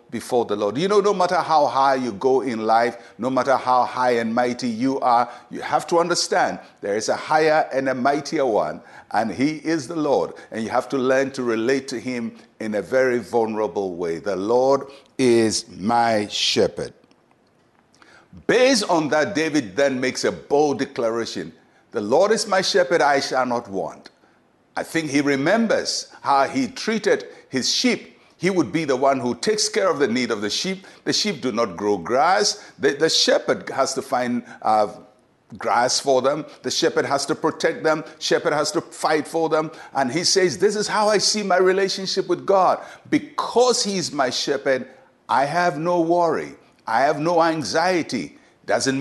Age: 60-79